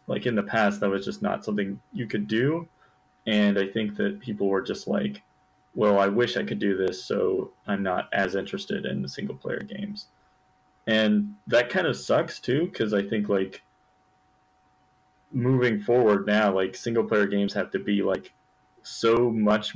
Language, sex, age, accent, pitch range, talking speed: English, male, 30-49, American, 95-110 Hz, 180 wpm